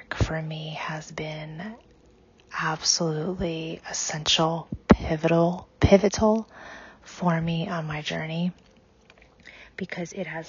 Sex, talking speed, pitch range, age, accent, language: female, 90 wpm, 160-180 Hz, 30-49, American, English